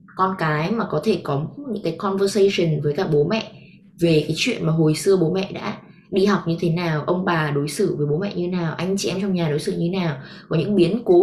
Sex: female